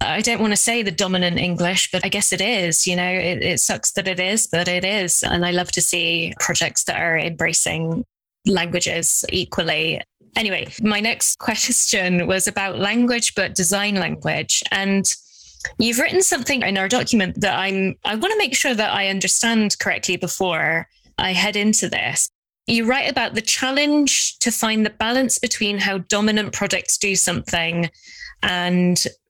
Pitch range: 180-220 Hz